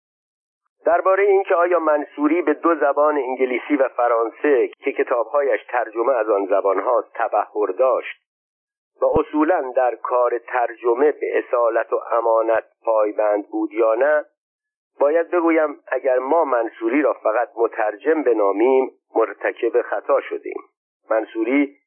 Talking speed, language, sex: 120 wpm, Persian, male